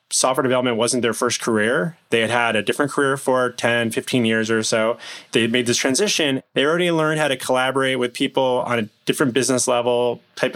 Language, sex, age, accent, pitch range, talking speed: English, male, 20-39, American, 120-135 Hz, 210 wpm